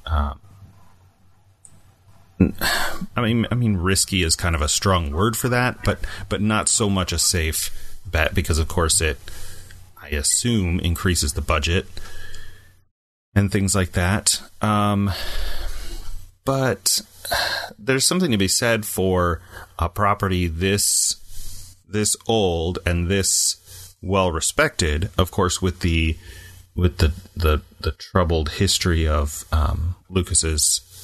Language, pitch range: English, 85-100 Hz